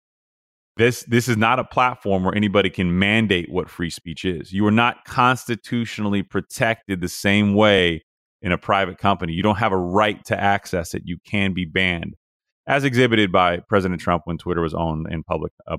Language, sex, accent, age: English, male, American, 30-49